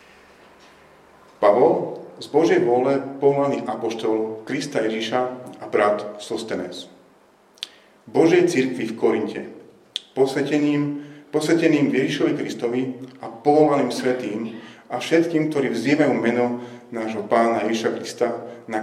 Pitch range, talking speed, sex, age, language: 110-135 Hz, 100 wpm, male, 40-59, Slovak